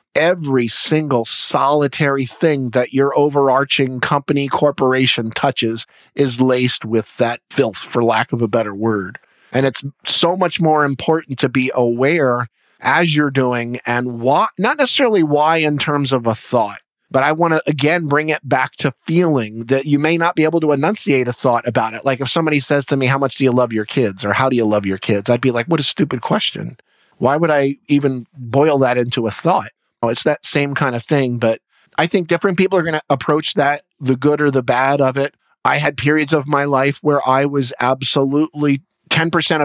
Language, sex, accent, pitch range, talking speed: English, male, American, 125-155 Hz, 205 wpm